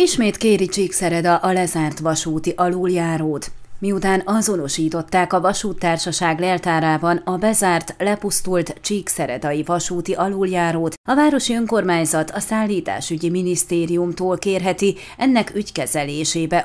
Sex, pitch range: female, 165-205 Hz